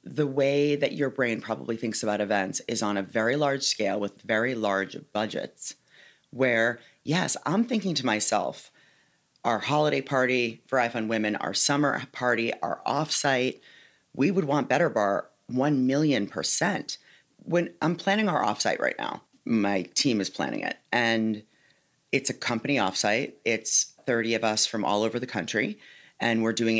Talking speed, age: 165 wpm, 30-49